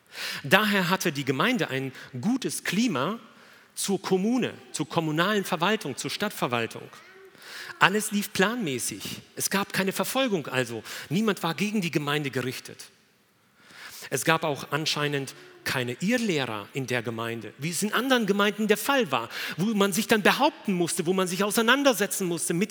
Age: 40-59